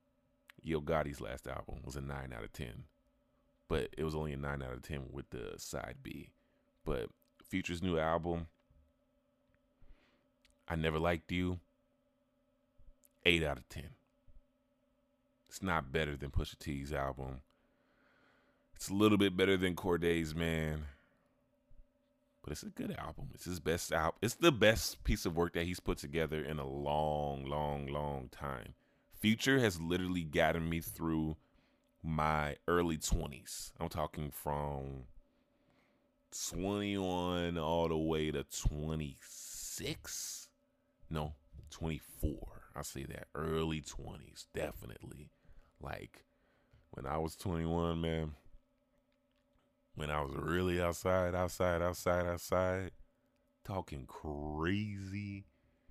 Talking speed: 125 wpm